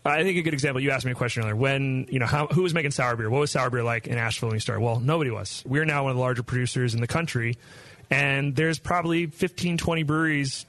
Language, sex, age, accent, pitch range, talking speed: English, male, 30-49, American, 125-150 Hz, 275 wpm